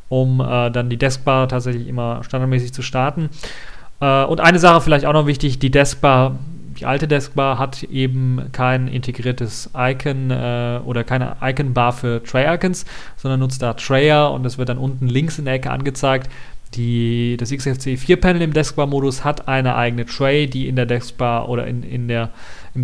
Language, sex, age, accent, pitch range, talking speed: German, male, 40-59, German, 125-150 Hz, 165 wpm